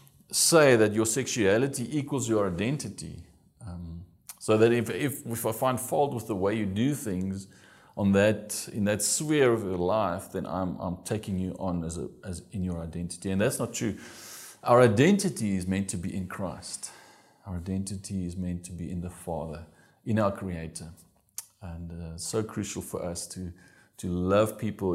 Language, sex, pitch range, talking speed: English, male, 85-110 Hz, 185 wpm